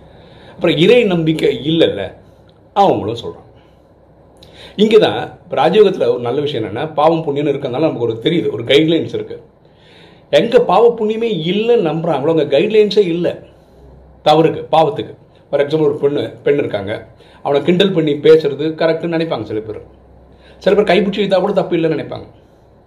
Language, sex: Tamil, male